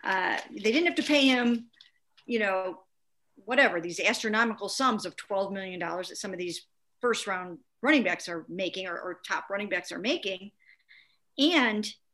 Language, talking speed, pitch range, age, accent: English, 175 wpm, 185-225 Hz, 50-69, American